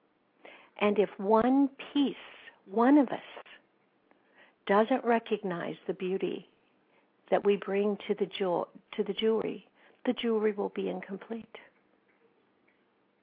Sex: female